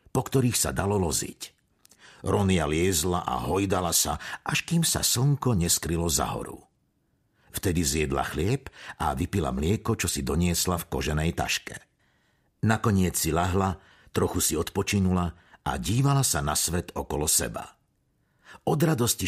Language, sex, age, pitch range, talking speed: Slovak, male, 50-69, 85-125 Hz, 135 wpm